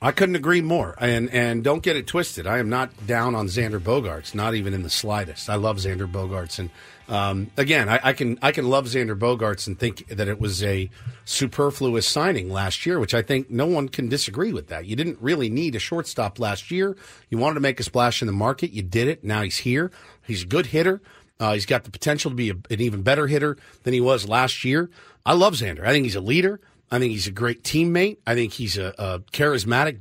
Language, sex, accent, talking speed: English, male, American, 240 wpm